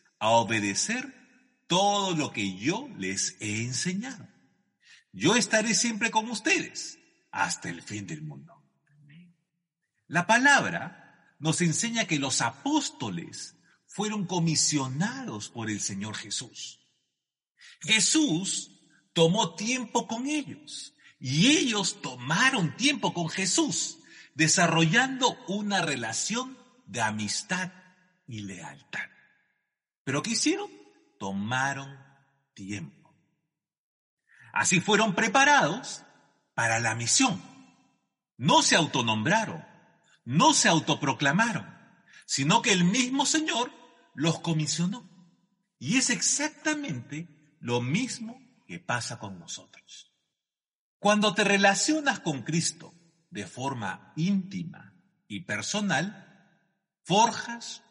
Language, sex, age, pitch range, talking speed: Spanish, male, 50-69, 150-230 Hz, 95 wpm